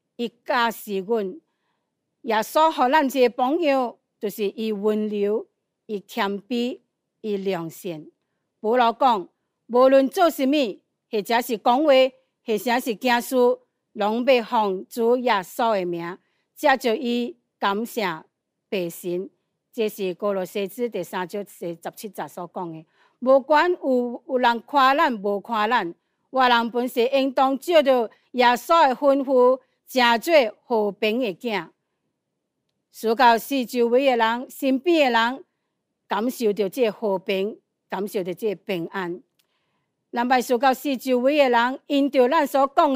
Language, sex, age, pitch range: Chinese, female, 60-79, 205-260 Hz